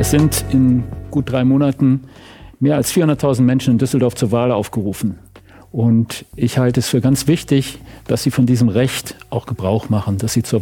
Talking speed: 185 wpm